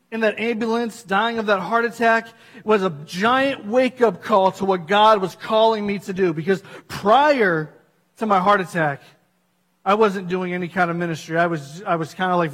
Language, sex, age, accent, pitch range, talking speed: English, male, 40-59, American, 170-205 Hz, 195 wpm